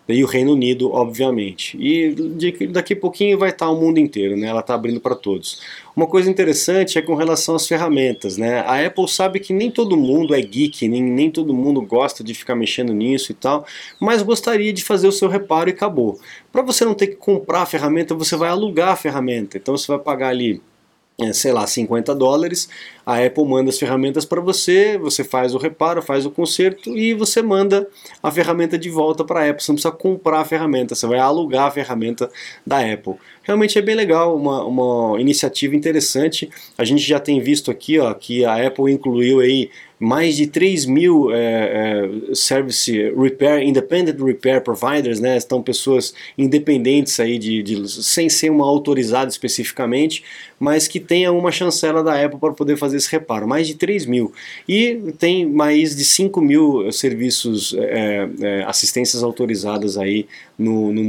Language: Portuguese